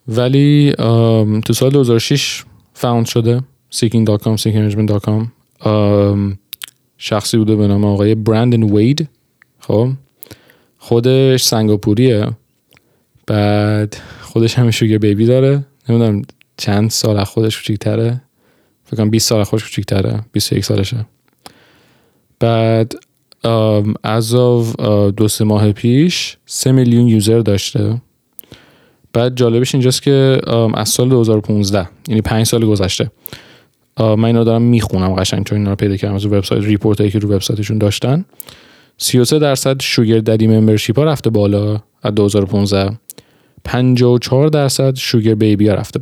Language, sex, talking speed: Persian, male, 120 wpm